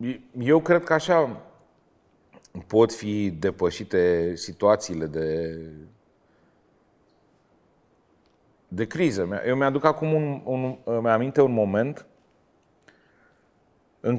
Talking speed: 90 wpm